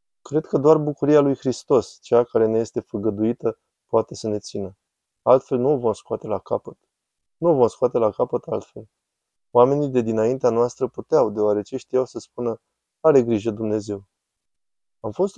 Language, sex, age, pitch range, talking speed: Romanian, male, 20-39, 110-130 Hz, 170 wpm